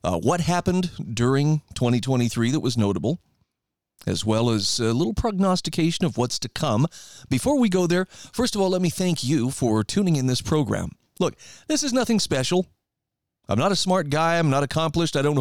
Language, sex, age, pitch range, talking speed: English, male, 40-59, 120-170 Hz, 190 wpm